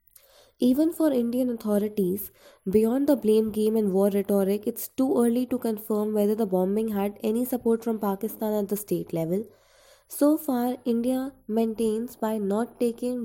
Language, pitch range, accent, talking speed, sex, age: English, 185-230 Hz, Indian, 160 wpm, female, 20-39